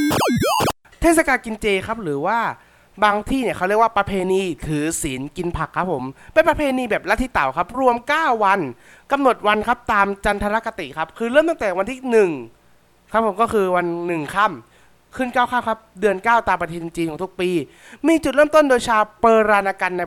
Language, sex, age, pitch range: Thai, male, 20-39, 170-230 Hz